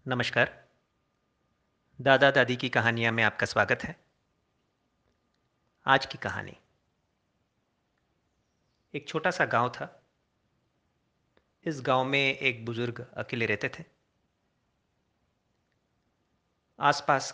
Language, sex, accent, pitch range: Hindi, male, native, 115-140 Hz